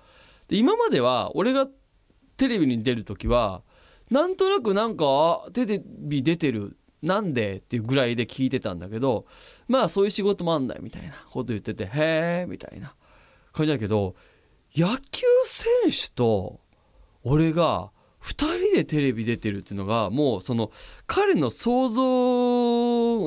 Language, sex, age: Japanese, male, 20-39